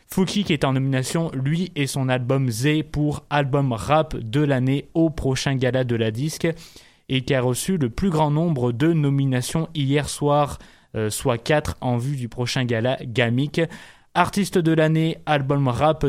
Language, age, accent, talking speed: French, 20-39, French, 175 wpm